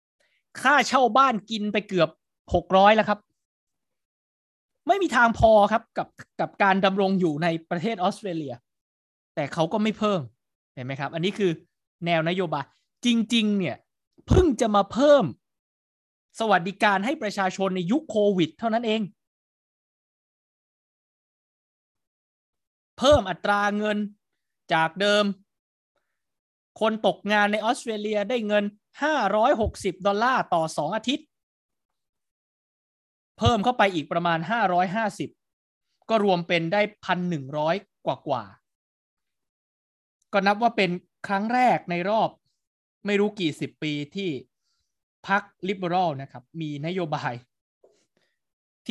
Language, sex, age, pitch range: Thai, male, 20-39, 165-215 Hz